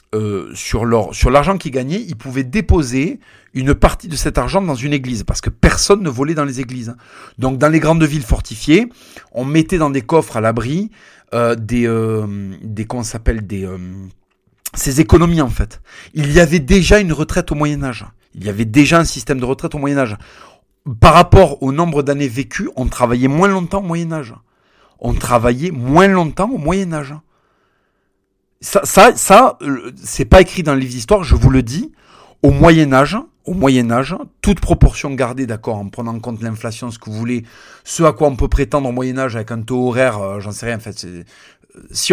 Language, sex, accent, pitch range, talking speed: French, male, French, 115-165 Hz, 200 wpm